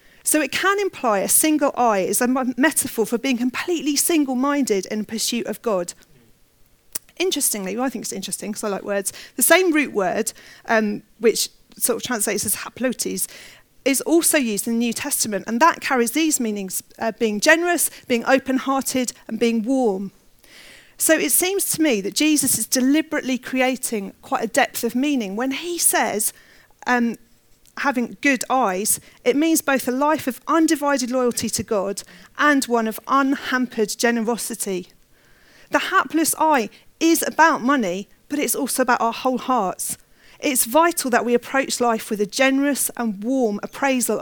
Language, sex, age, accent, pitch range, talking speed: English, female, 40-59, British, 220-280 Hz, 165 wpm